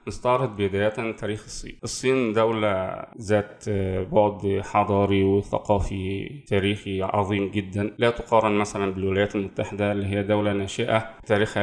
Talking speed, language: 125 wpm, Arabic